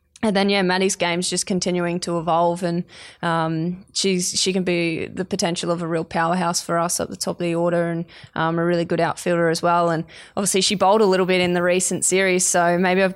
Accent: Australian